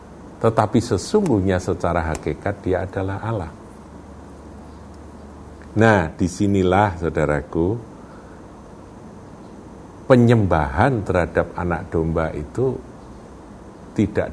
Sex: male